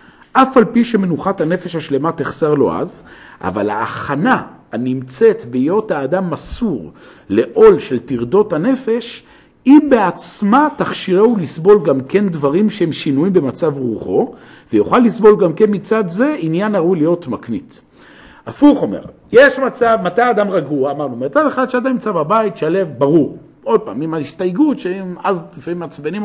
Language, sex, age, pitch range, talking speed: Hebrew, male, 50-69, 140-220 Hz, 145 wpm